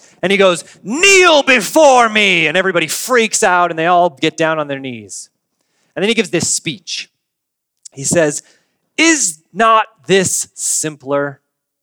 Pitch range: 150-210 Hz